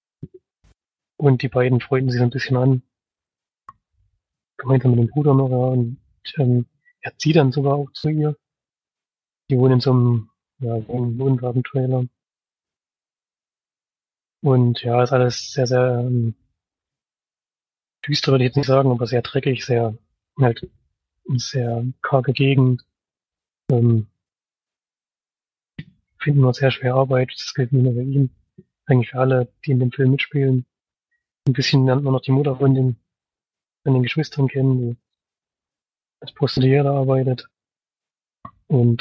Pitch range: 120-135 Hz